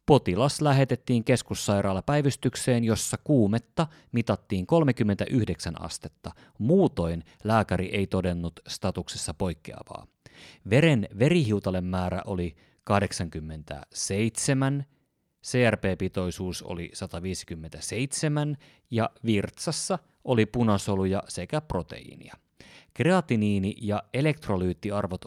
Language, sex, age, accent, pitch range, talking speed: Finnish, male, 30-49, native, 95-135 Hz, 75 wpm